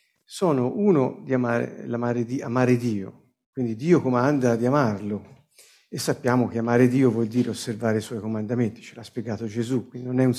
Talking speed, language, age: 180 wpm, Italian, 50-69